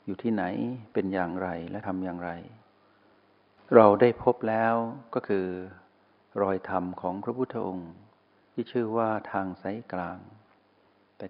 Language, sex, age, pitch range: Thai, male, 60-79, 95-115 Hz